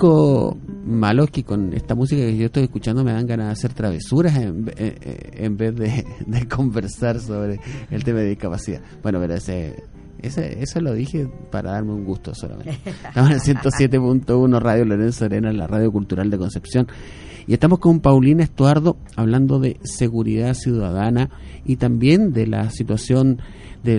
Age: 30-49